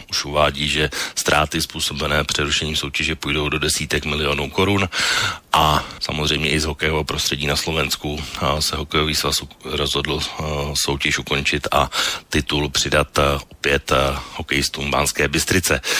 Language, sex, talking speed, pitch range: Slovak, male, 130 wpm, 75-95 Hz